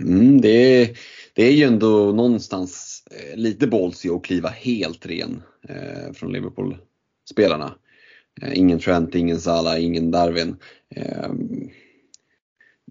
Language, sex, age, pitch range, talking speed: Swedish, male, 30-49, 90-120 Hz, 110 wpm